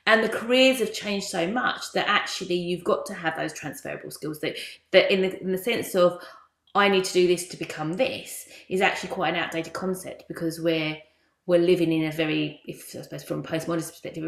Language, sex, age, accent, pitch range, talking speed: English, female, 30-49, British, 165-195 Hz, 220 wpm